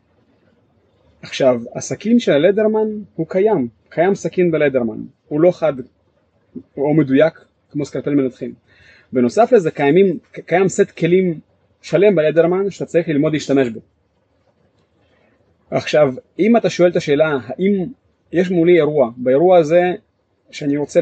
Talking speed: 125 wpm